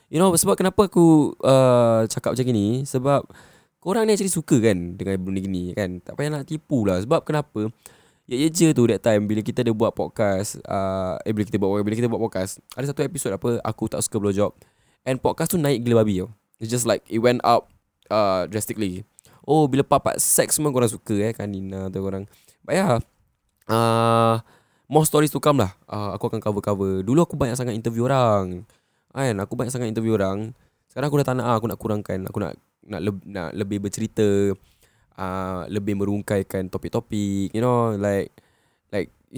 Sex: male